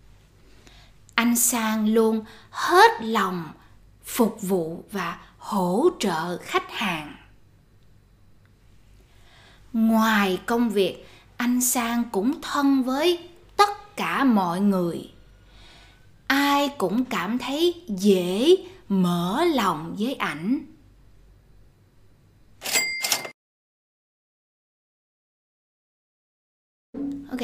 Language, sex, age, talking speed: Vietnamese, female, 20-39, 75 wpm